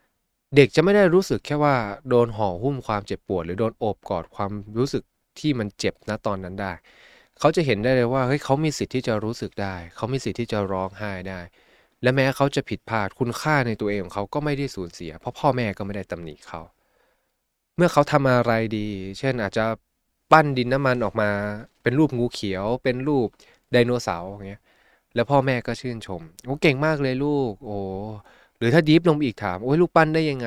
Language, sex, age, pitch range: Thai, male, 20-39, 100-135 Hz